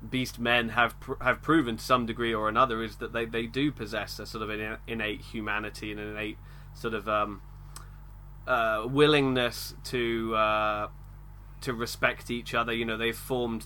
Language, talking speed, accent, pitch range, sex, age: English, 185 wpm, British, 110-130 Hz, male, 20-39